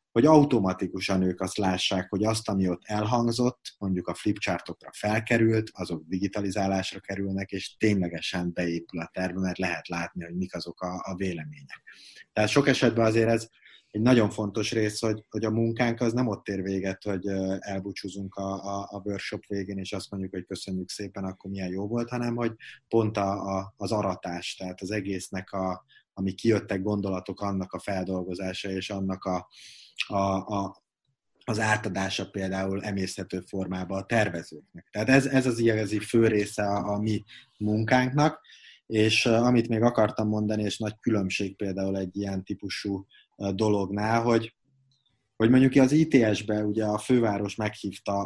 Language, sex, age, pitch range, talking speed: Hungarian, male, 30-49, 95-110 Hz, 160 wpm